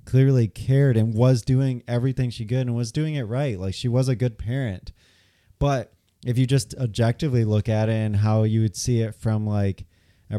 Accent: American